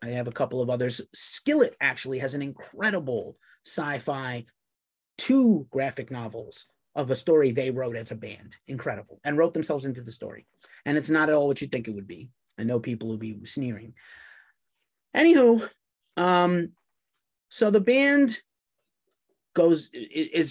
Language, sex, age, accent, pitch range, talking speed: English, male, 30-49, American, 125-175 Hz, 160 wpm